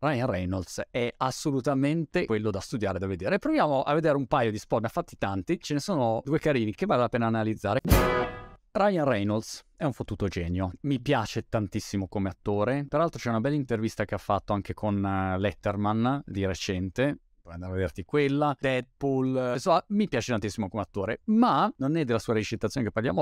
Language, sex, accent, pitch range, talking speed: Italian, male, native, 105-145 Hz, 190 wpm